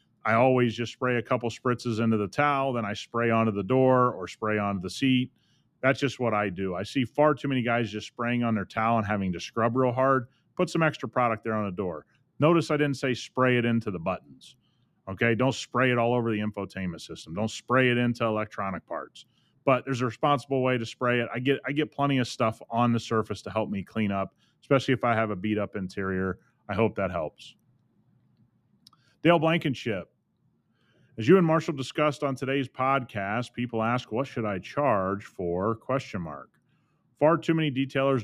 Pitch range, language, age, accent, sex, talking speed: 110-135 Hz, English, 30-49, American, male, 205 wpm